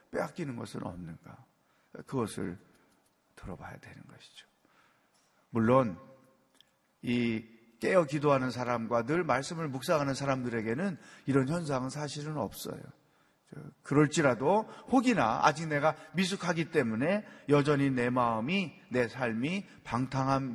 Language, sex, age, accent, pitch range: Korean, male, 40-59, native, 115-175 Hz